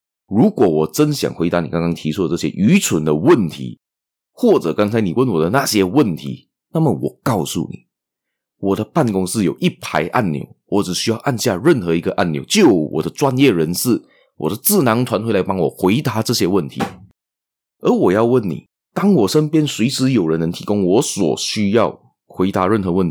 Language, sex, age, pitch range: Chinese, male, 30-49, 80-125 Hz